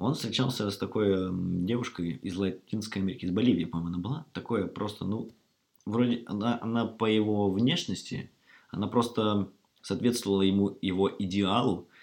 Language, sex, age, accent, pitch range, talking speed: Russian, male, 20-39, native, 90-110 Hz, 140 wpm